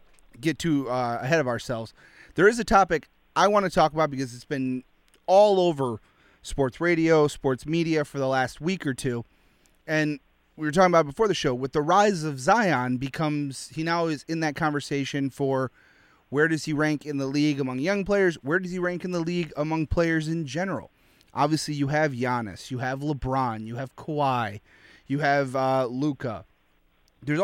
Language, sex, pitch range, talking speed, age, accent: English, male, 135-175 Hz, 190 wpm, 30-49, American